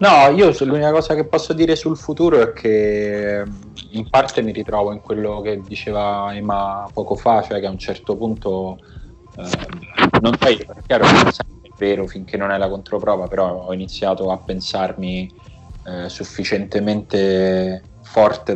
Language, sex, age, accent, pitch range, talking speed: Italian, male, 20-39, native, 90-105 Hz, 160 wpm